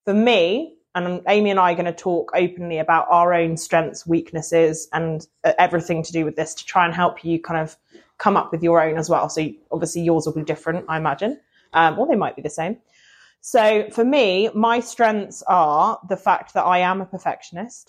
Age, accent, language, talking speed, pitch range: 20-39, British, English, 215 wpm, 165-190 Hz